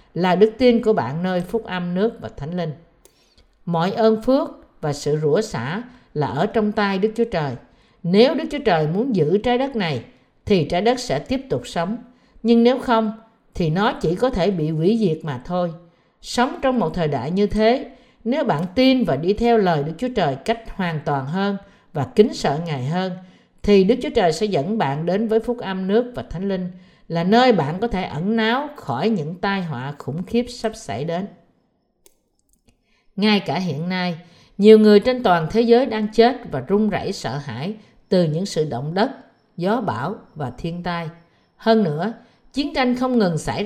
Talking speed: 200 wpm